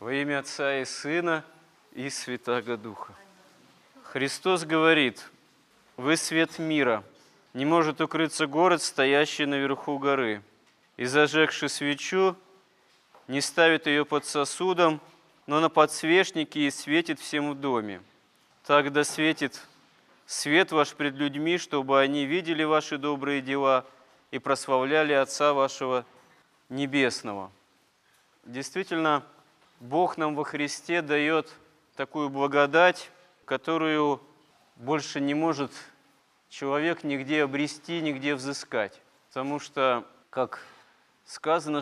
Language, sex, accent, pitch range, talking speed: Russian, male, native, 135-160 Hz, 105 wpm